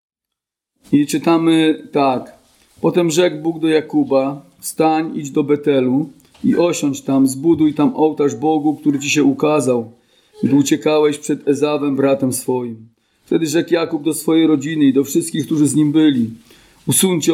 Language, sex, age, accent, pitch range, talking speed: Polish, male, 40-59, native, 140-160 Hz, 150 wpm